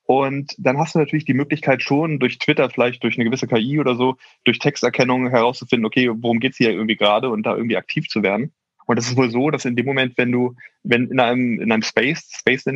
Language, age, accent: German, 20-39, German